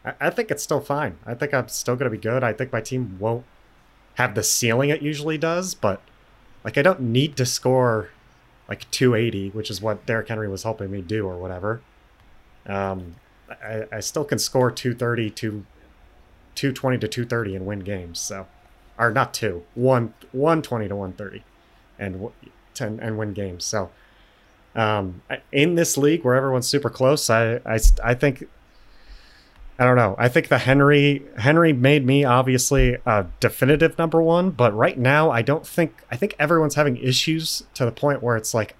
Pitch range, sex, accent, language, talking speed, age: 100-130 Hz, male, American, English, 185 wpm, 30-49